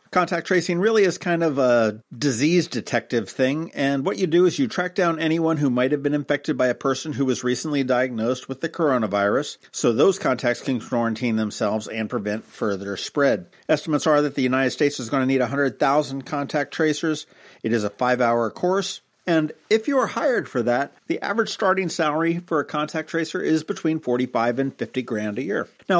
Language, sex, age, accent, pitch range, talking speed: English, male, 50-69, American, 125-160 Hz, 200 wpm